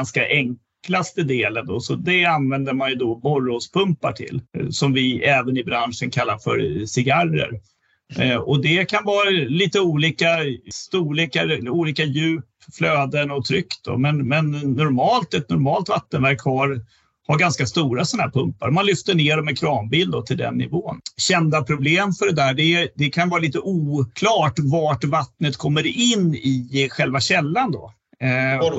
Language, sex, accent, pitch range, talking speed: Swedish, male, native, 135-165 Hz, 160 wpm